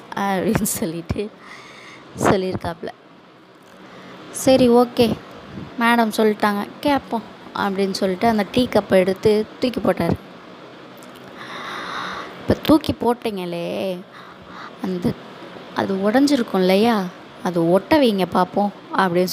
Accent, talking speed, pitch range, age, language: native, 85 wpm, 180-220 Hz, 20-39, Tamil